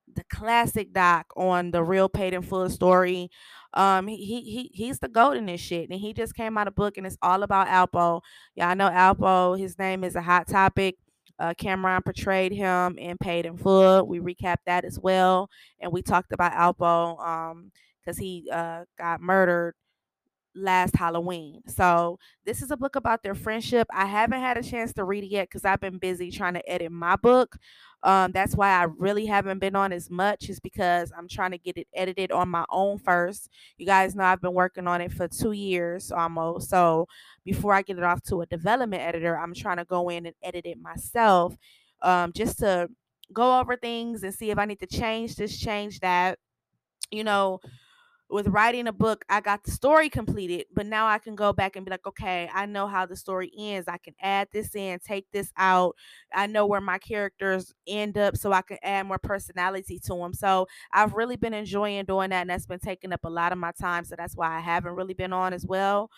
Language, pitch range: English, 175-200 Hz